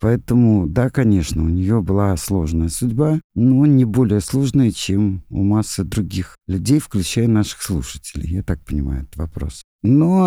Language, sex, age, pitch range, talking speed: Russian, male, 50-69, 90-125 Hz, 150 wpm